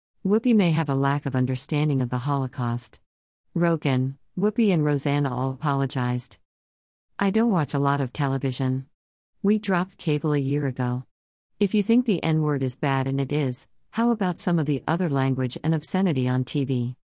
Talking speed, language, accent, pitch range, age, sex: 175 wpm, English, American, 130-160 Hz, 50-69, female